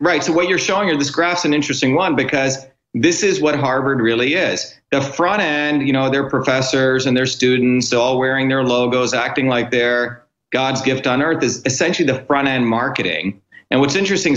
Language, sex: English, male